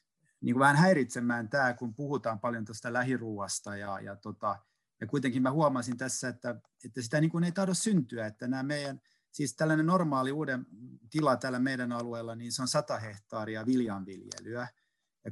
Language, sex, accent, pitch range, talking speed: Finnish, male, native, 115-140 Hz, 165 wpm